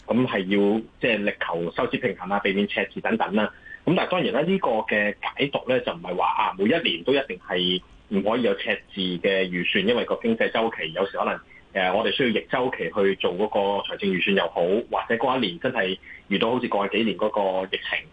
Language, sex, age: Chinese, male, 30-49